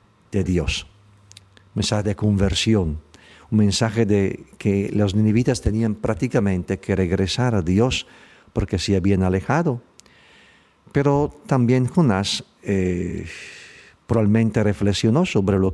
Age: 50-69